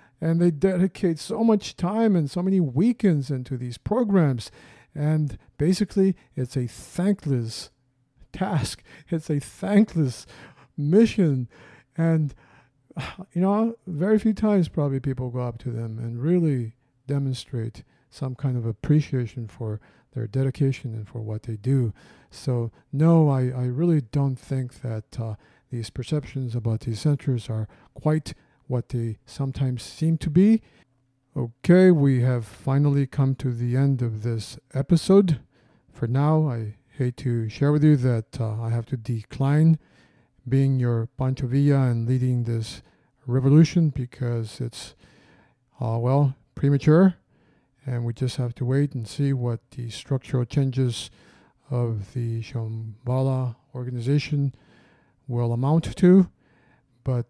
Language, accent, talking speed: English, American, 135 wpm